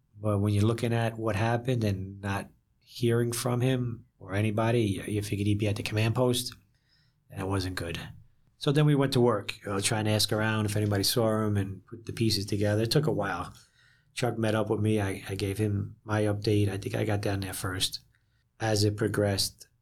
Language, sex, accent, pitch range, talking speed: English, male, American, 100-115 Hz, 220 wpm